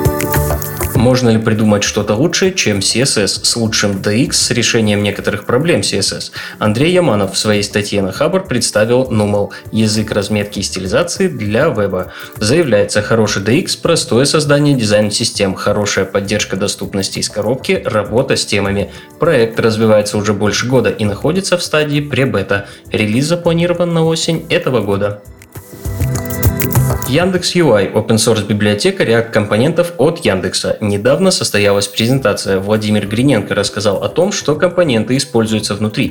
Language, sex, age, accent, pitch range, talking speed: Russian, male, 20-39, native, 100-130 Hz, 140 wpm